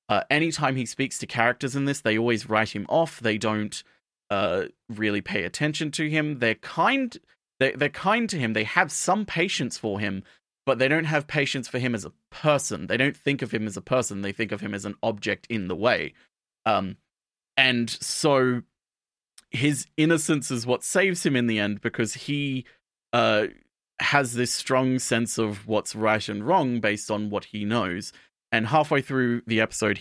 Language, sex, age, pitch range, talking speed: English, male, 30-49, 110-150 Hz, 195 wpm